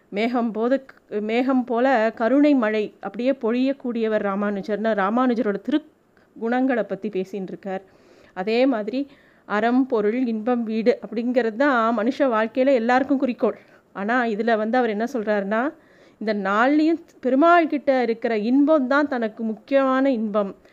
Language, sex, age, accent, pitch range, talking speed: Tamil, female, 30-49, native, 215-270 Hz, 120 wpm